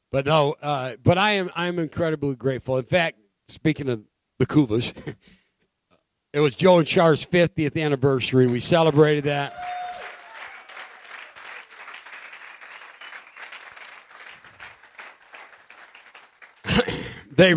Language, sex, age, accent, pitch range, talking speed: English, male, 60-79, American, 120-165 Hz, 90 wpm